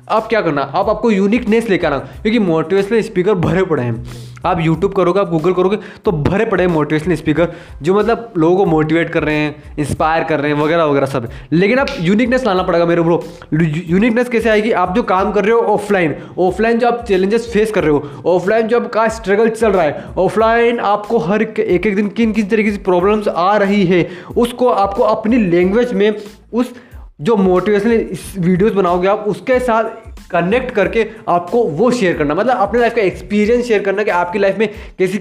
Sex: male